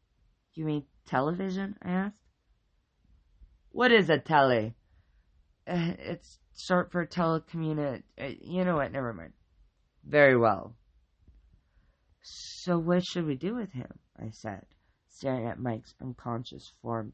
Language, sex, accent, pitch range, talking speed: English, female, American, 115-180 Hz, 125 wpm